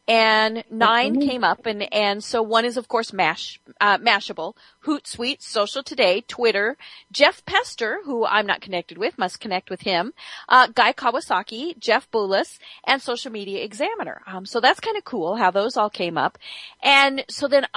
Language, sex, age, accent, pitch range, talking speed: English, female, 40-59, American, 200-280 Hz, 175 wpm